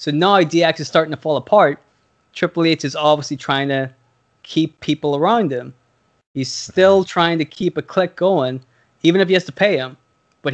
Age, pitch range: 20-39, 135-165 Hz